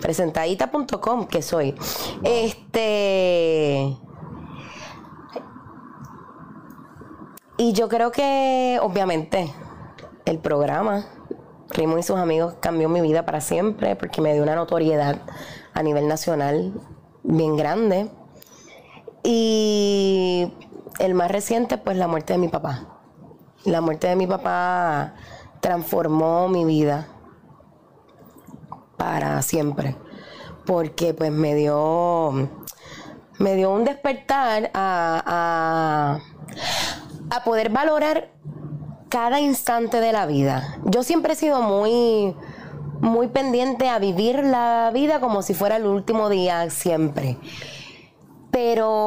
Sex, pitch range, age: female, 160-230 Hz, 20-39